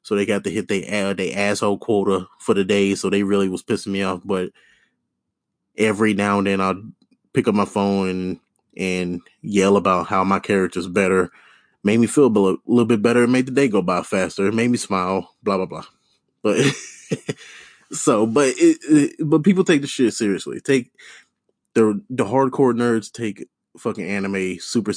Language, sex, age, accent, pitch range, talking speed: English, male, 20-39, American, 95-120 Hz, 190 wpm